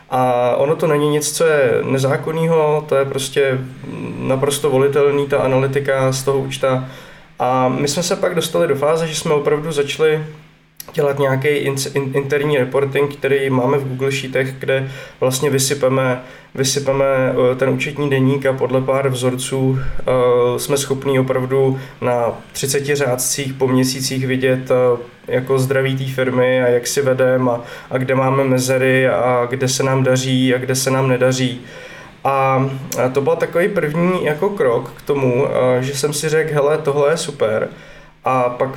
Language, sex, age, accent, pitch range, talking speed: Czech, male, 20-39, native, 130-150 Hz, 155 wpm